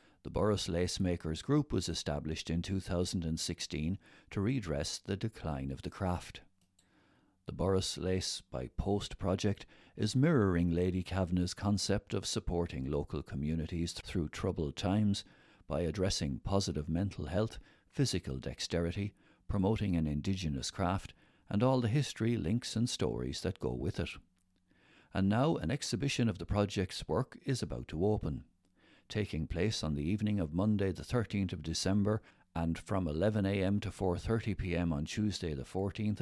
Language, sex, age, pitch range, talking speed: English, male, 60-79, 85-110 Hz, 145 wpm